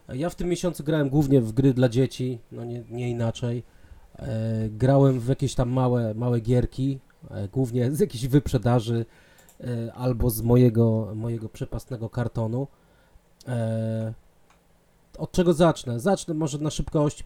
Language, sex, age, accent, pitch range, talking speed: Polish, male, 30-49, native, 115-135 Hz, 145 wpm